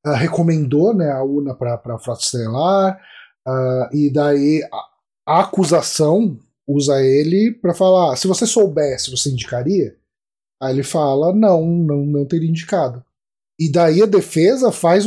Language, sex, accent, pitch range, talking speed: Portuguese, male, Brazilian, 145-205 Hz, 145 wpm